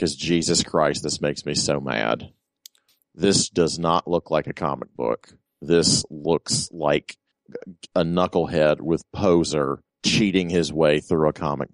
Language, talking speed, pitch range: English, 145 wpm, 80-95 Hz